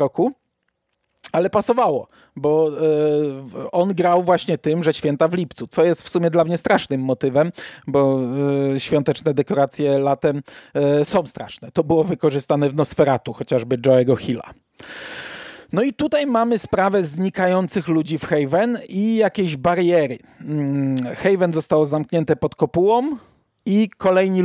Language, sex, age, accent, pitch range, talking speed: Polish, male, 40-59, native, 145-180 Hz, 130 wpm